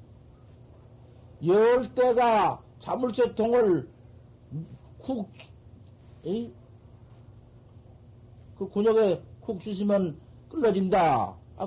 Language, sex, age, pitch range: Korean, male, 50-69, 115-190 Hz